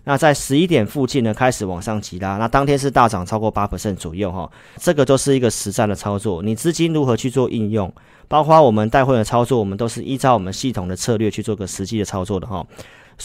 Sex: male